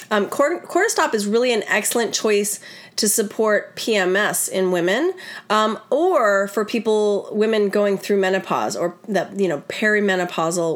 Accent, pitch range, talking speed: American, 190-235 Hz, 145 wpm